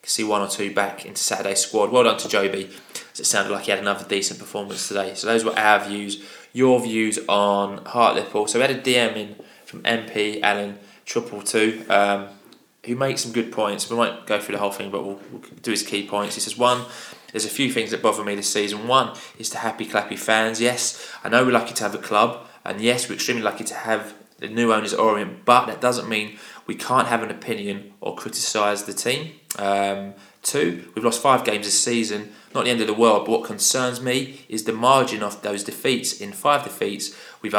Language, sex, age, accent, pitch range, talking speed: English, male, 20-39, British, 105-120 Hz, 225 wpm